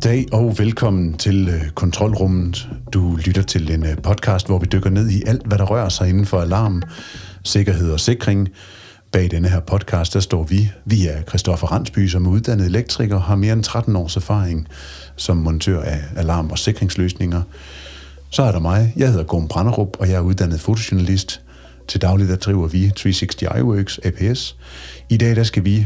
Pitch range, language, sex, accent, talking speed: 85-110 Hz, Danish, male, native, 180 wpm